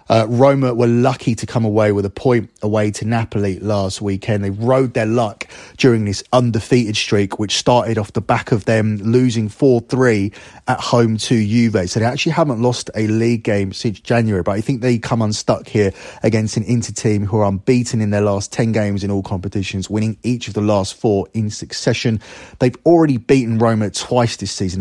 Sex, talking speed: male, 200 wpm